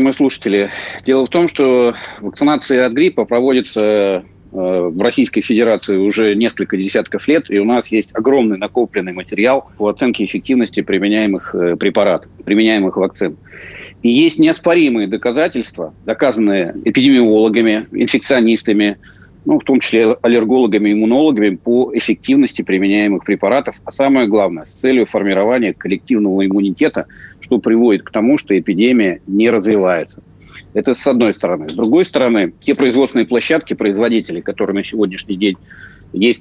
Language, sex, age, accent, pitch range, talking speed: Russian, male, 40-59, native, 100-135 Hz, 130 wpm